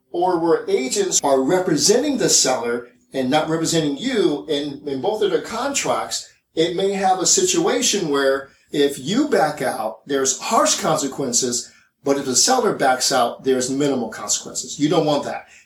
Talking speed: 165 wpm